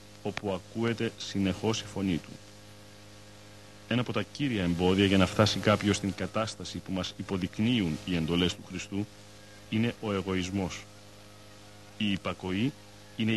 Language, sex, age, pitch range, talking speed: Greek, male, 40-59, 95-105 Hz, 135 wpm